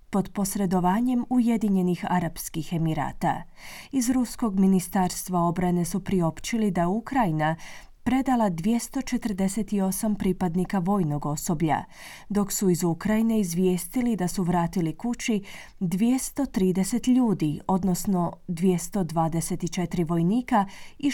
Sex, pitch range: female, 175-225 Hz